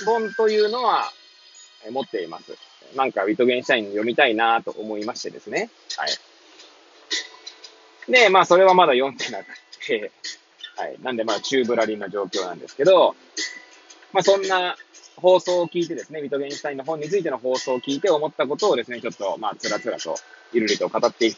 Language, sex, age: Japanese, male, 20-39